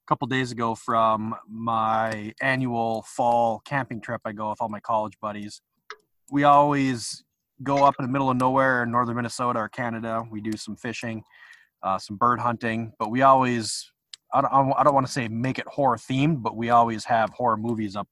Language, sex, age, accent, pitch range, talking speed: English, male, 20-39, American, 110-135 Hz, 195 wpm